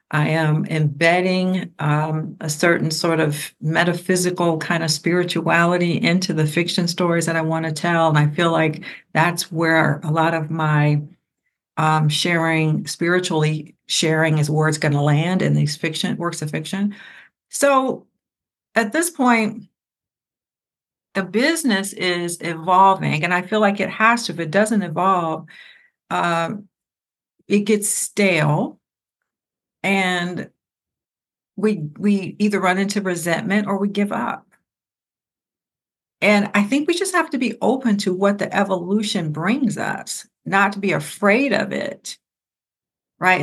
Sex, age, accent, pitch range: female, 60-79, American, 160-205 Hz